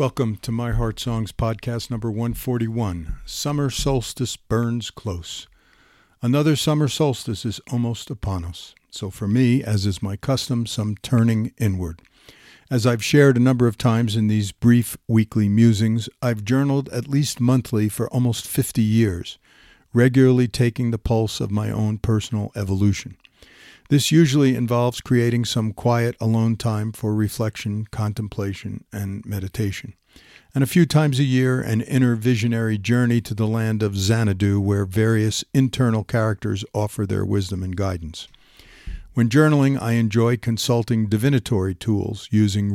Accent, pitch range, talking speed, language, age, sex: American, 105-120 Hz, 145 wpm, English, 50-69, male